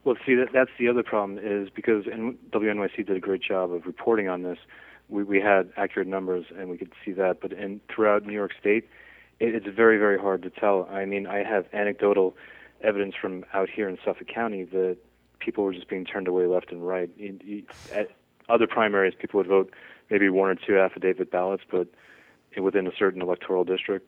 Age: 30-49